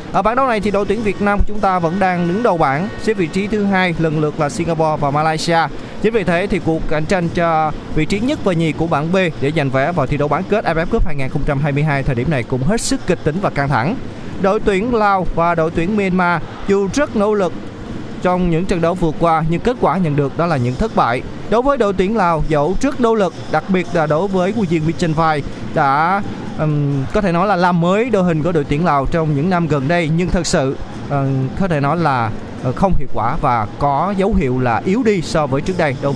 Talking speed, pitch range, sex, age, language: 250 wpm, 145-195 Hz, male, 20-39, Vietnamese